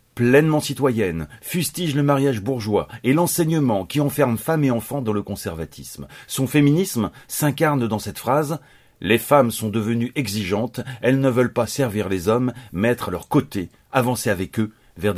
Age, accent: 30-49, French